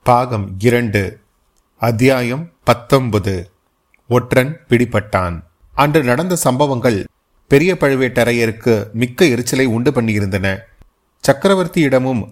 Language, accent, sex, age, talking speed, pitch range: Tamil, native, male, 30-49, 80 wpm, 110-130 Hz